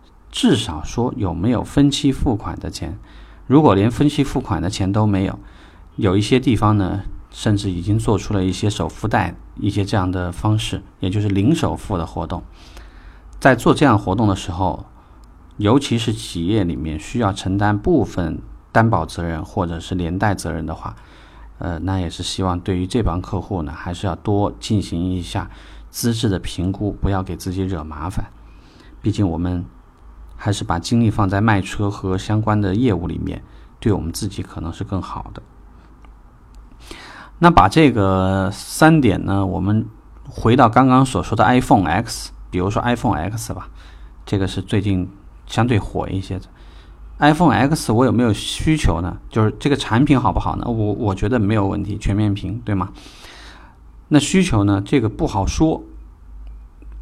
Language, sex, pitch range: Chinese, male, 85-110 Hz